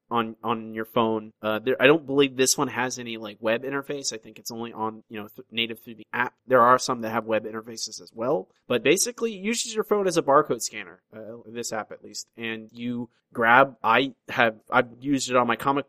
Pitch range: 115-135 Hz